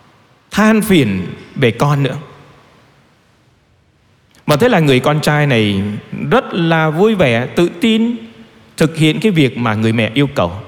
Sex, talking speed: male, 150 wpm